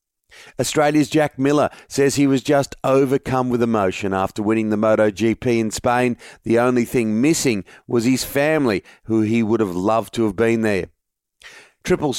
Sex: male